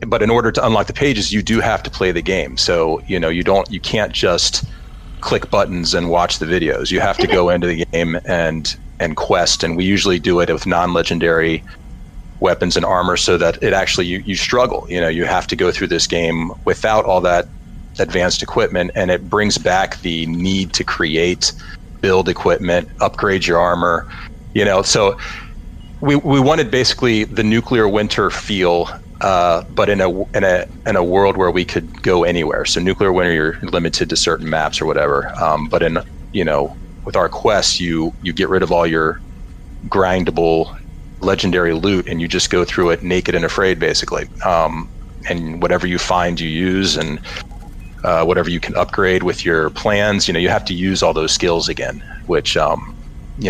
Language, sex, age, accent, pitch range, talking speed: English, male, 40-59, American, 85-95 Hz, 195 wpm